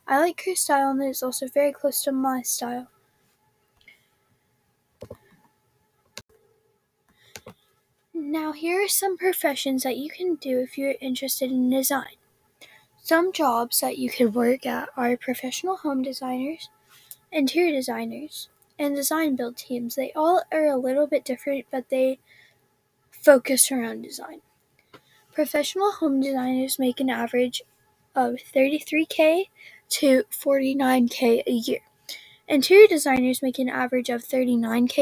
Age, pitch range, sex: 10-29, 255-310 Hz, female